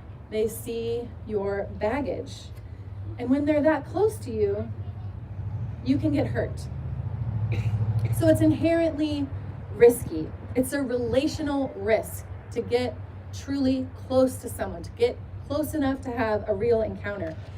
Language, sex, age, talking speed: English, female, 30-49, 130 wpm